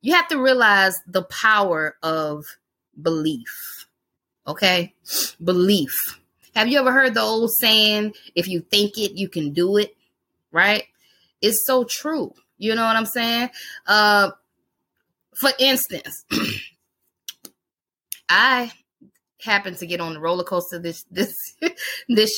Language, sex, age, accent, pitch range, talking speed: English, female, 20-39, American, 190-265 Hz, 130 wpm